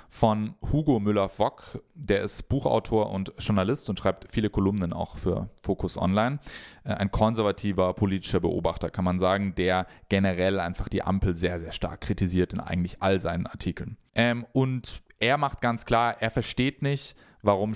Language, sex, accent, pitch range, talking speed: English, male, German, 95-115 Hz, 160 wpm